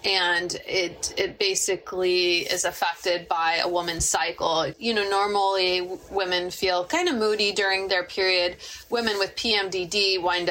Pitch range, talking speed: 180-215 Hz, 145 wpm